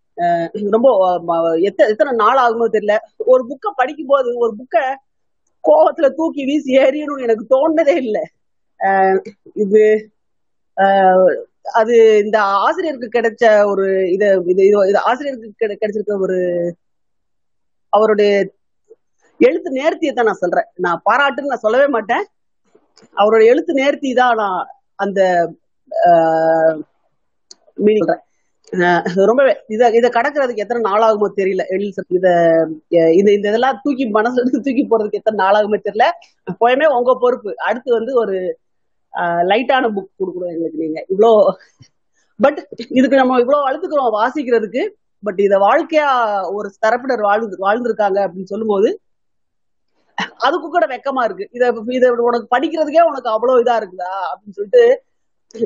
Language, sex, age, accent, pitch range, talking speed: Tamil, female, 30-49, native, 200-270 Hz, 100 wpm